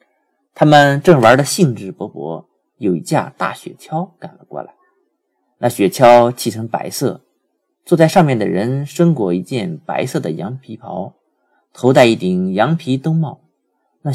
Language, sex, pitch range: Chinese, male, 120-180 Hz